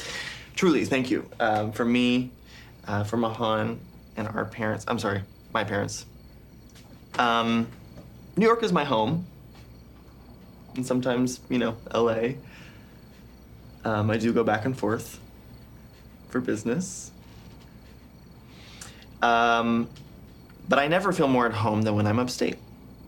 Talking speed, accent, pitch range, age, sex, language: 120 wpm, American, 110-125 Hz, 20-39, male, English